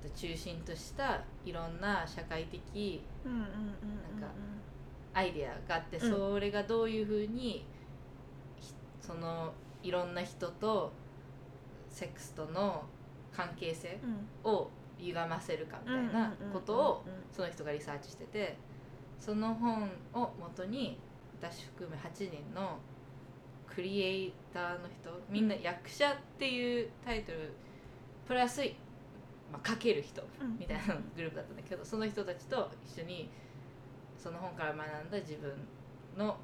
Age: 20-39